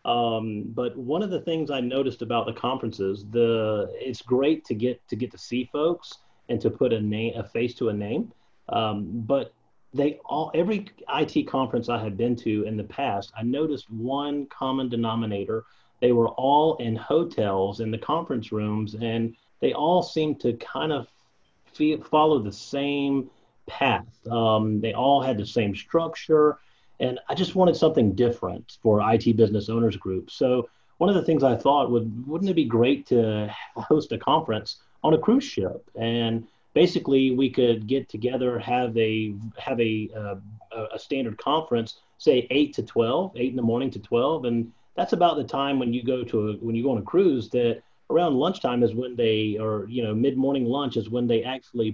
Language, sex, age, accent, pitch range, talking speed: English, male, 30-49, American, 110-135 Hz, 190 wpm